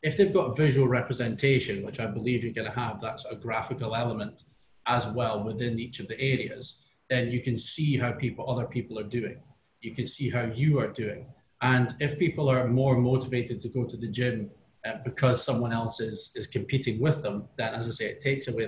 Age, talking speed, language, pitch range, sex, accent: 30-49, 215 wpm, English, 115-130 Hz, male, British